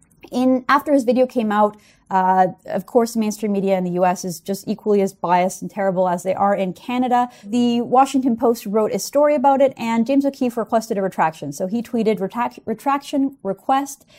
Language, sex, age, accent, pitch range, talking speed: English, female, 30-49, American, 195-250 Hz, 185 wpm